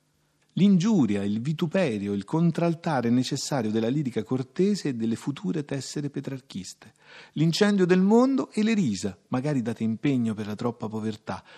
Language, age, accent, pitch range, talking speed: Italian, 40-59, native, 110-155 Hz, 140 wpm